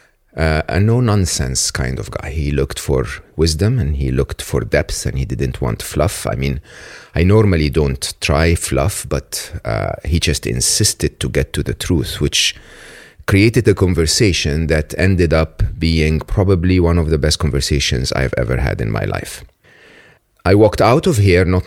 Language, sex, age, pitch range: English, male, 30-49, 75-90 Hz